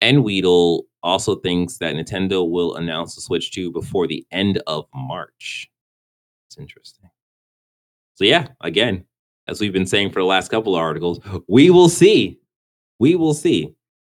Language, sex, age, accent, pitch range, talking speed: English, male, 30-49, American, 80-115 Hz, 155 wpm